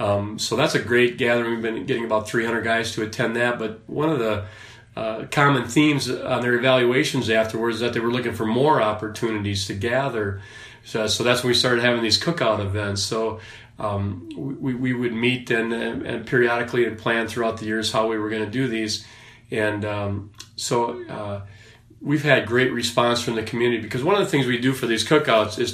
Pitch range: 110-125 Hz